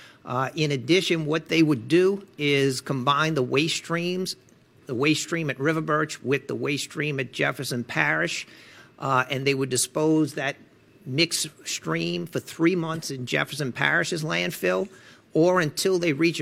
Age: 50-69